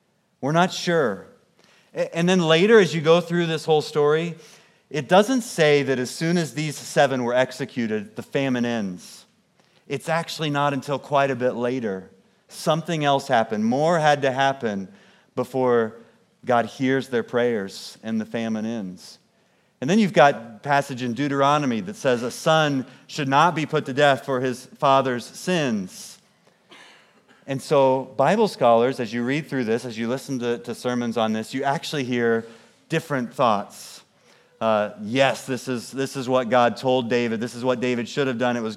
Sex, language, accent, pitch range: male, English, American, 120-160 Hz